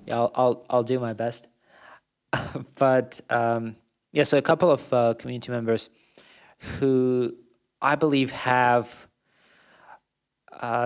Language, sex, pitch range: English, male, 110-130 Hz